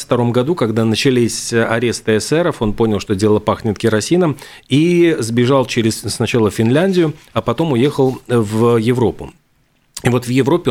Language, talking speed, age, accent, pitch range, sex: Russian, 145 wpm, 40-59, native, 115-140 Hz, male